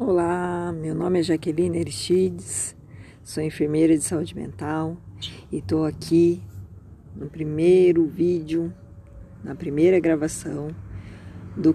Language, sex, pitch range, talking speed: Portuguese, female, 110-175 Hz, 105 wpm